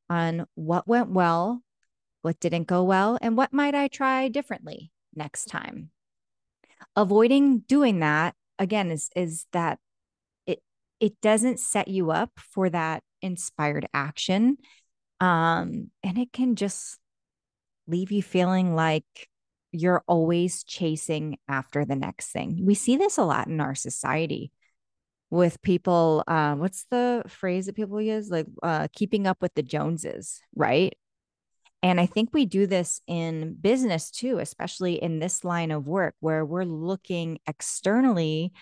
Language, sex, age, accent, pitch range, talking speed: English, female, 30-49, American, 160-215 Hz, 145 wpm